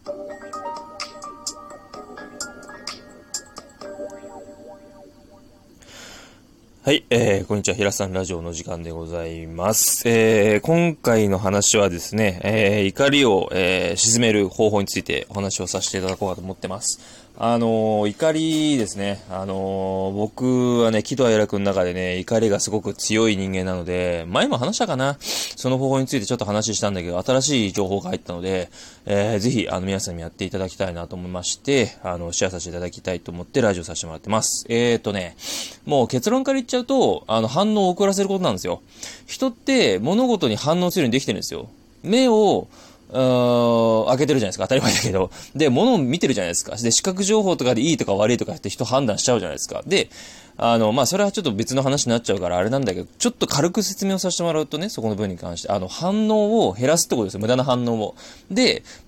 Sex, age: male, 20-39